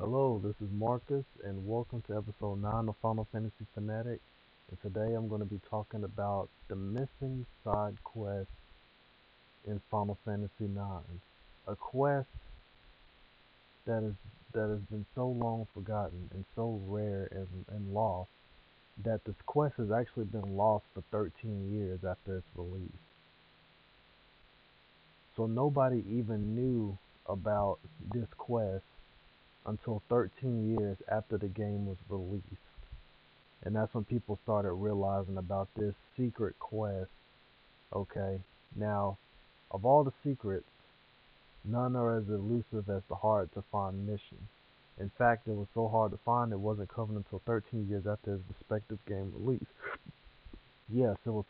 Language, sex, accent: English, male, American